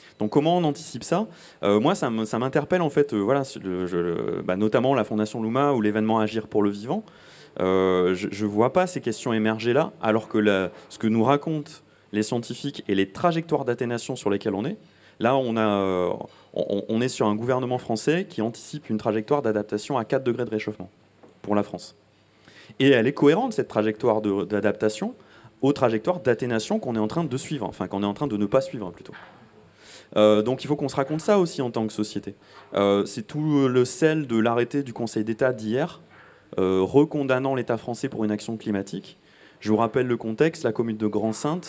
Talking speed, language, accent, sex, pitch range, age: 210 wpm, French, French, male, 105-140 Hz, 30-49